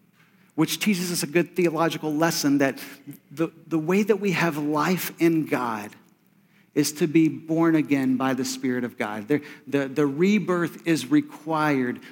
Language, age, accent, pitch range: English, 40-59, American, 145-175 Hz